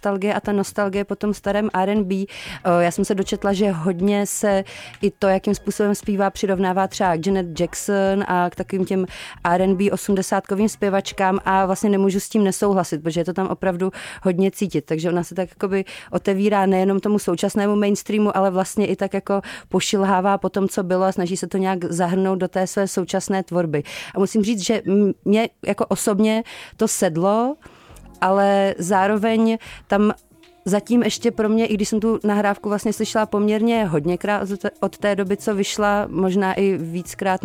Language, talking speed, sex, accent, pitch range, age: Czech, 175 wpm, female, native, 185-200 Hz, 30-49